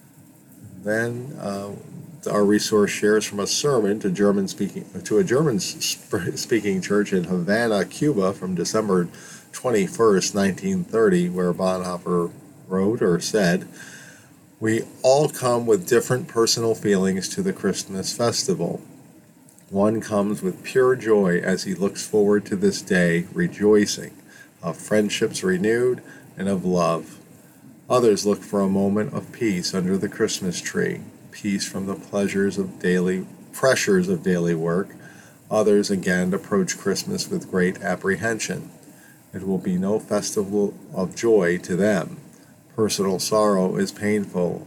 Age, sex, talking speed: 50-69, male, 130 wpm